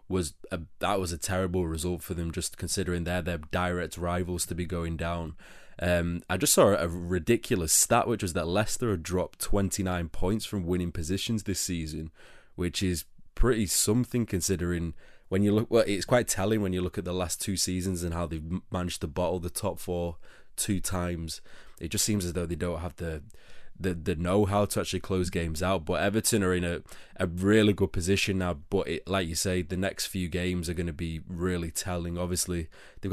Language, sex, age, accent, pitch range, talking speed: English, male, 20-39, British, 85-95 Hz, 205 wpm